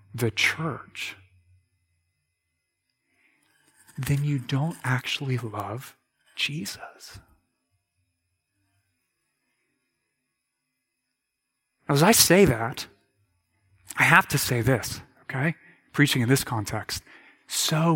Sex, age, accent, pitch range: male, 30-49, American, 110-170 Hz